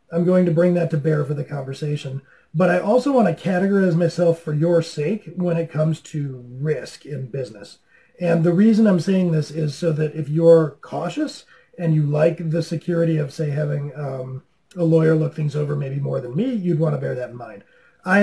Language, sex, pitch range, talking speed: English, male, 145-175 Hz, 215 wpm